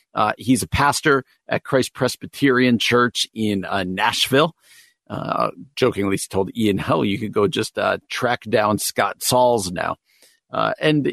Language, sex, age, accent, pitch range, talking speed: English, male, 50-69, American, 105-140 Hz, 155 wpm